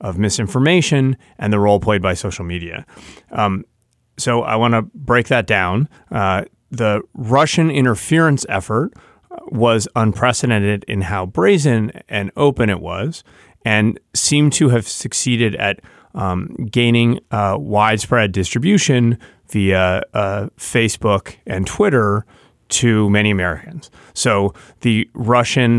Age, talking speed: 30-49, 125 wpm